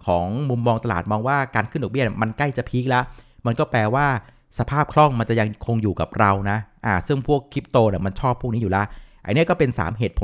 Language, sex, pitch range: Thai, male, 100-135 Hz